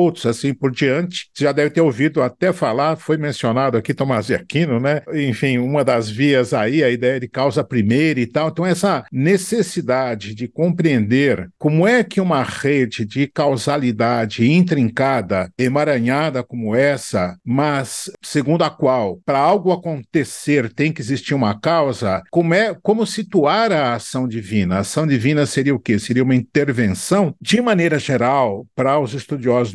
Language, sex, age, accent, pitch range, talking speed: Portuguese, male, 50-69, Brazilian, 120-160 Hz, 160 wpm